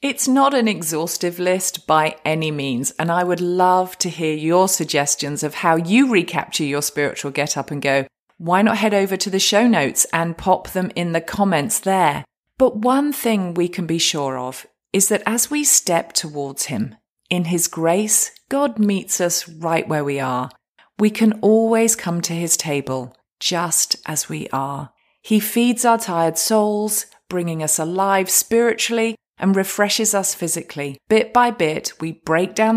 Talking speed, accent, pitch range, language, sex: 170 wpm, British, 155-220 Hz, English, female